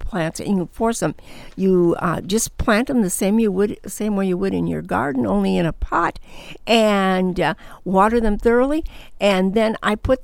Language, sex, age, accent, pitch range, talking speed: English, female, 60-79, American, 175-215 Hz, 200 wpm